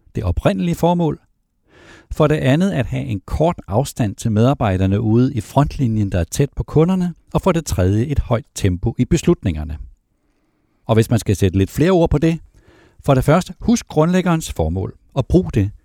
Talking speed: 185 wpm